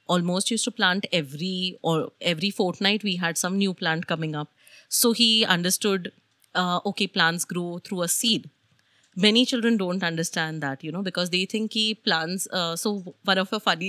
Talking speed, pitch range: 185 wpm, 180-250 Hz